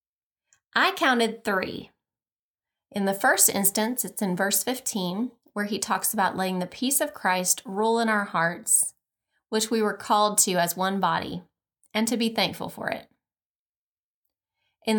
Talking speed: 155 wpm